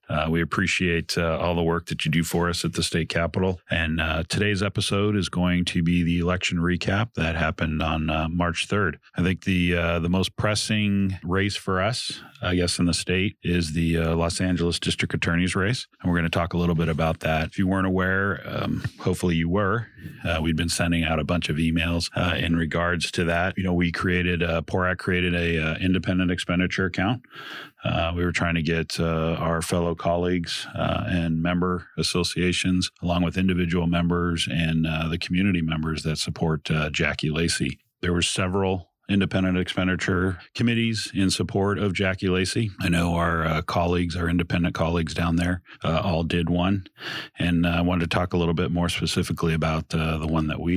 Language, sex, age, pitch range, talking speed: English, male, 40-59, 85-95 Hz, 200 wpm